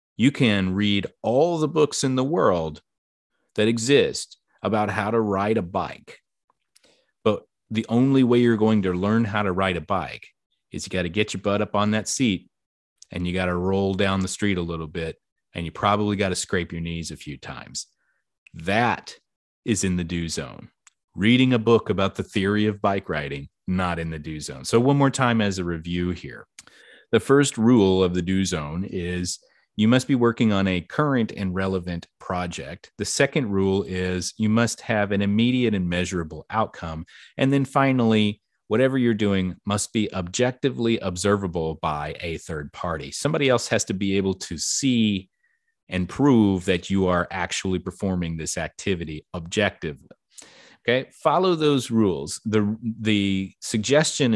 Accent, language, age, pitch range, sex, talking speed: American, English, 30-49, 90-115 Hz, male, 175 wpm